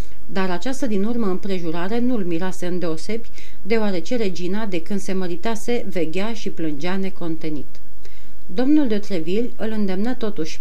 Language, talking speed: Romanian, 140 wpm